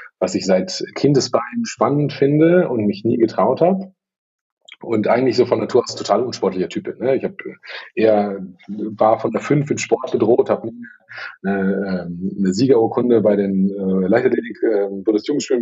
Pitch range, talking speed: 100-120 Hz, 160 wpm